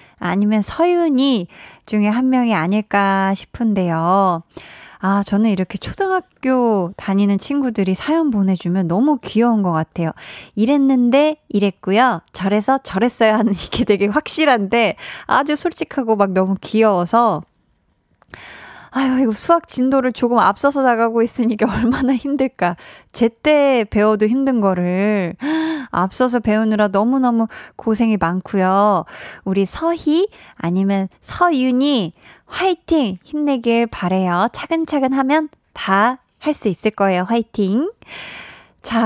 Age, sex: 20-39, female